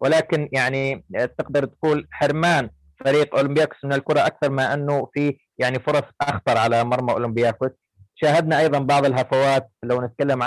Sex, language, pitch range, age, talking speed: male, Arabic, 125-145 Hz, 30-49, 145 wpm